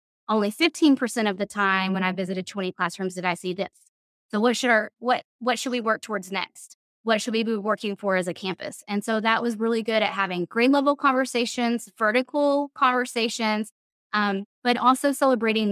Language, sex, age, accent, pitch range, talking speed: English, female, 20-39, American, 200-250 Hz, 195 wpm